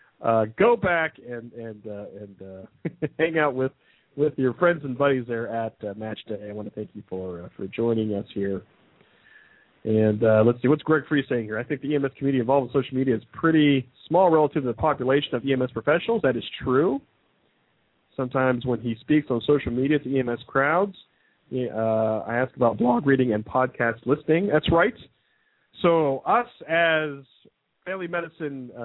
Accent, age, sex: American, 40-59, male